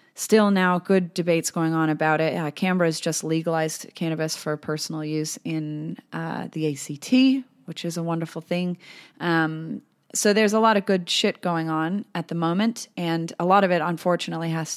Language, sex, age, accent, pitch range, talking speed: English, female, 30-49, American, 155-180 Hz, 185 wpm